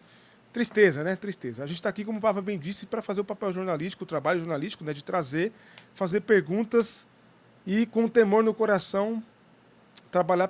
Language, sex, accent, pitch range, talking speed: Portuguese, male, Brazilian, 165-210 Hz, 175 wpm